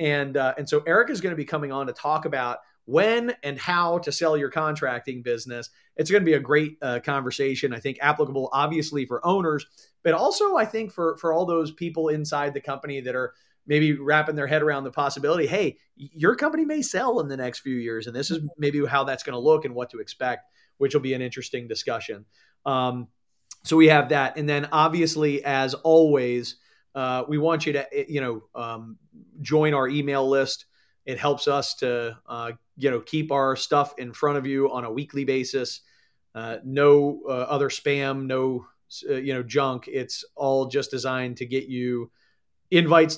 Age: 30-49